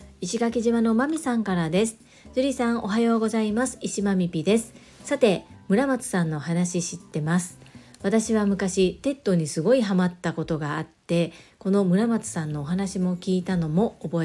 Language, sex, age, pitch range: Japanese, female, 40-59, 170-225 Hz